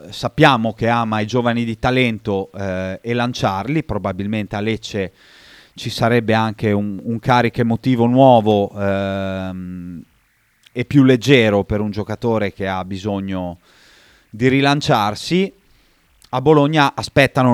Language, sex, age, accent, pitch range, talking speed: Italian, male, 30-49, native, 105-130 Hz, 125 wpm